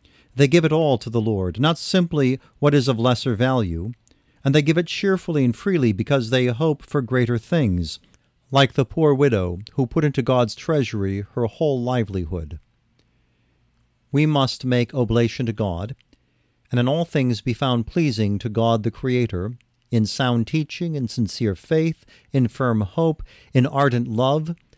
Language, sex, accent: English, male, American